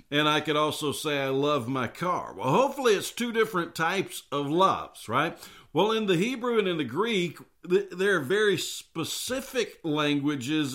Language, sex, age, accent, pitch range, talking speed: English, male, 50-69, American, 130-185 Hz, 170 wpm